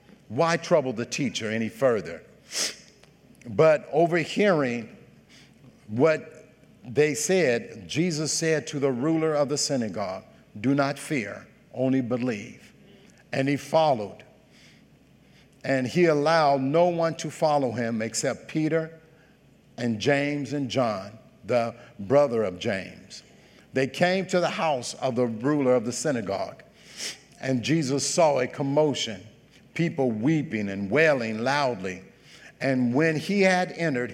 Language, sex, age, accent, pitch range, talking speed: English, male, 50-69, American, 125-160 Hz, 125 wpm